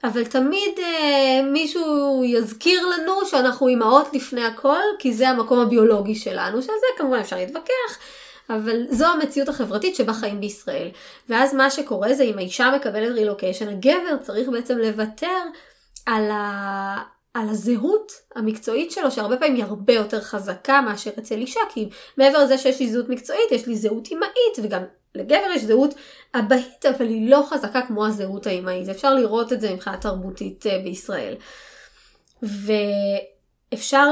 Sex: female